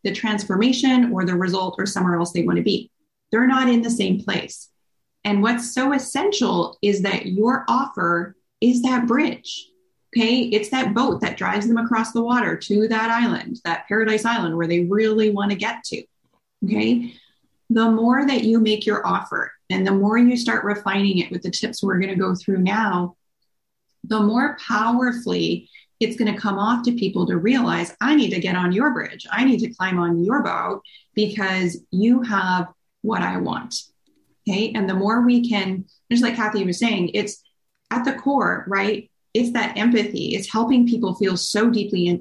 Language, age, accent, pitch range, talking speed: English, 30-49, American, 195-240 Hz, 190 wpm